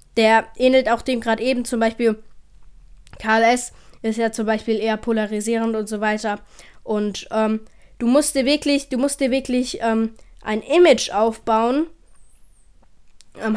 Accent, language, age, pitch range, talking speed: German, German, 10-29, 220-255 Hz, 145 wpm